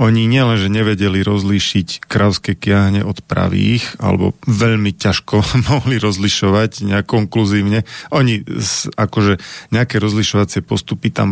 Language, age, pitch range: Slovak, 40-59, 100-120 Hz